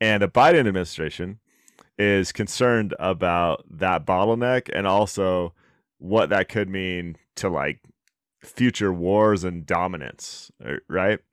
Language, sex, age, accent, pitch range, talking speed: English, male, 30-49, American, 90-105 Hz, 115 wpm